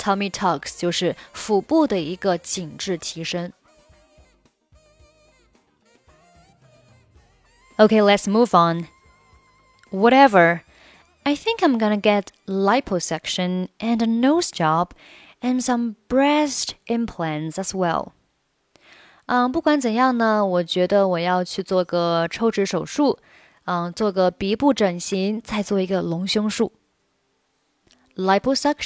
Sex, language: female, Chinese